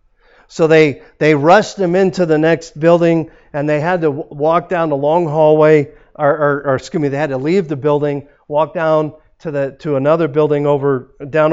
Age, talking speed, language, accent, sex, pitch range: 50-69, 205 wpm, English, American, male, 140-175 Hz